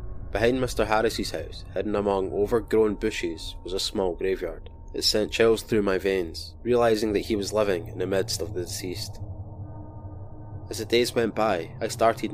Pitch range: 90-110 Hz